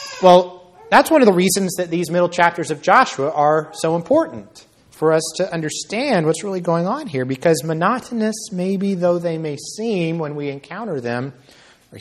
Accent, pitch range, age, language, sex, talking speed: American, 135-185 Hz, 30-49, English, male, 180 wpm